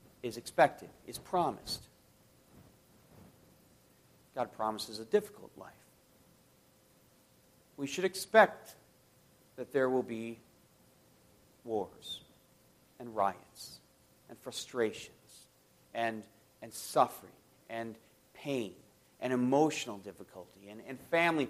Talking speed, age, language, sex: 90 wpm, 50-69, English, male